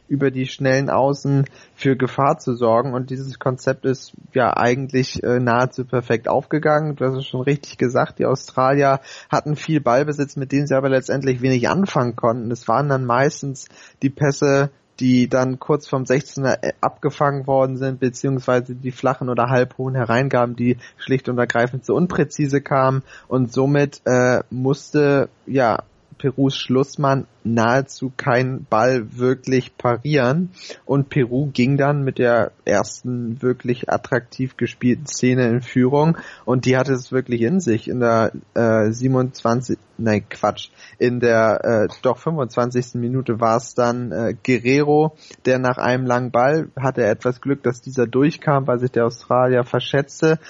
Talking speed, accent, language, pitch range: 155 wpm, German, German, 125-135 Hz